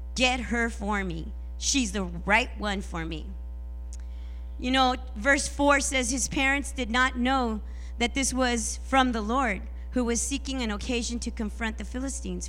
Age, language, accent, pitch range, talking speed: 40-59, English, American, 175-265 Hz, 170 wpm